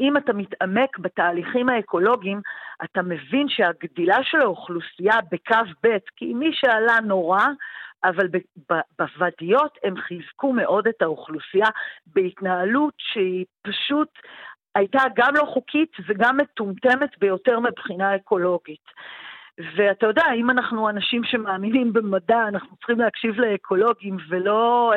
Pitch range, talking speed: 180-235 Hz, 120 wpm